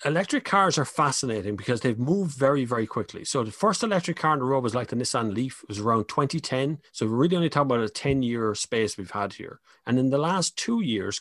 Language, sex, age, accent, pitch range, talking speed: English, male, 30-49, Irish, 110-135 Hz, 240 wpm